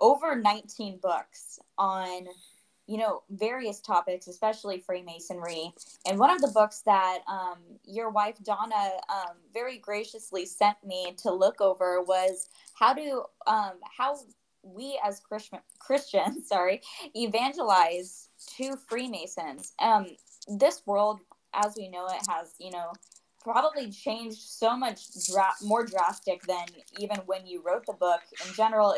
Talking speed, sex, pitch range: 135 wpm, female, 185-220 Hz